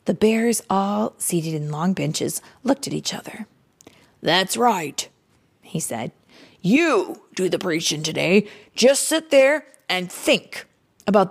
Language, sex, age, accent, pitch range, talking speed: English, female, 30-49, American, 195-305 Hz, 140 wpm